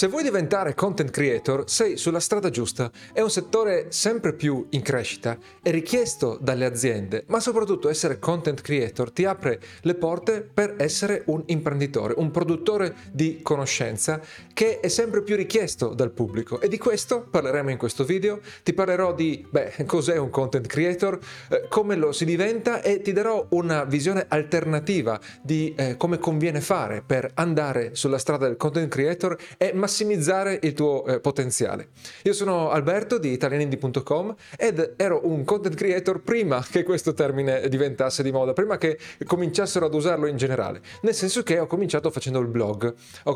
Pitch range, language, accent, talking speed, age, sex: 135-190 Hz, Italian, native, 165 wpm, 40-59, male